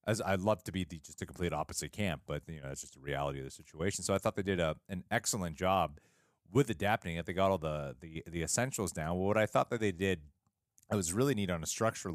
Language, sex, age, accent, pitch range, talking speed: English, male, 30-49, American, 75-100 Hz, 270 wpm